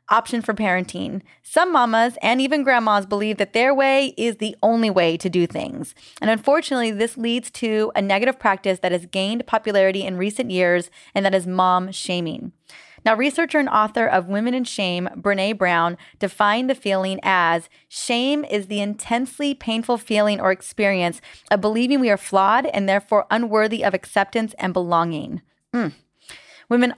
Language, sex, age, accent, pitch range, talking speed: English, female, 20-39, American, 195-240 Hz, 165 wpm